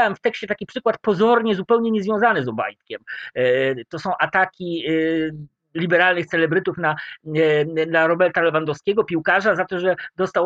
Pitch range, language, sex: 160-220 Hz, Polish, male